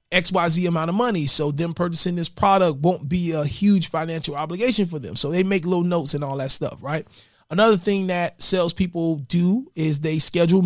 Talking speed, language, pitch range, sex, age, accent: 210 wpm, English, 155-200 Hz, male, 30-49, American